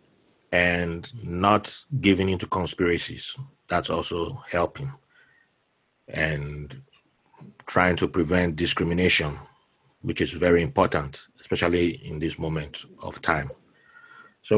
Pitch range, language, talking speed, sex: 95-130 Hz, English, 100 wpm, male